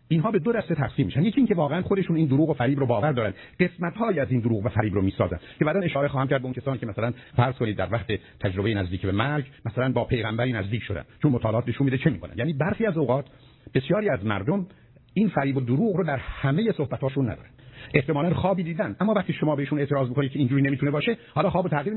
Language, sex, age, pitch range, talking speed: Persian, male, 50-69, 125-165 Hz, 240 wpm